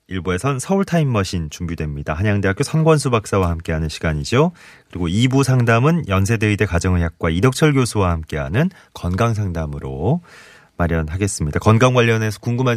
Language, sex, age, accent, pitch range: Korean, male, 30-49, native, 85-120 Hz